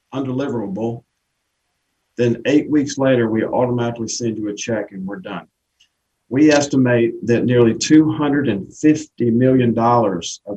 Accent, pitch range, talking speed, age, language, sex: American, 110-125 Hz, 120 wpm, 50-69, English, male